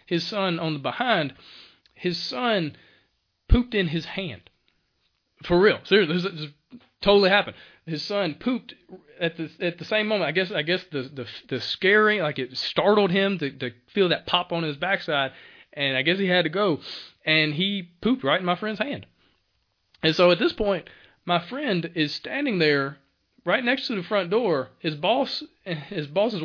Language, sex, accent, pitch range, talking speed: English, male, American, 140-200 Hz, 190 wpm